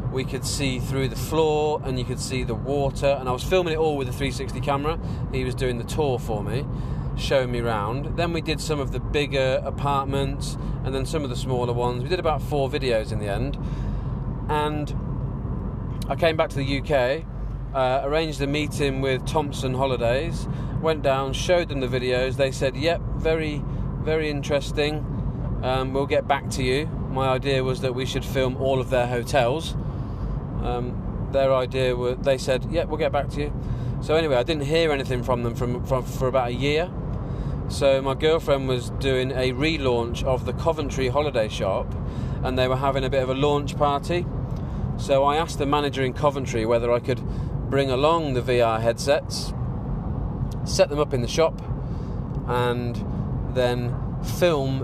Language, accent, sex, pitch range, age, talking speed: English, British, male, 125-145 Hz, 40-59, 185 wpm